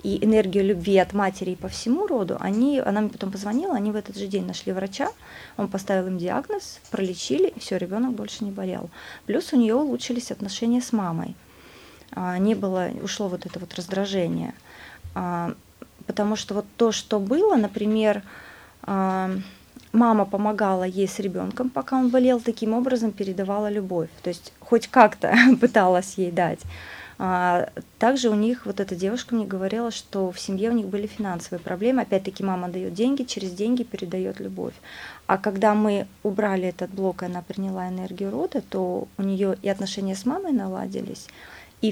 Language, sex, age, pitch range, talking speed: Russian, female, 30-49, 185-230 Hz, 165 wpm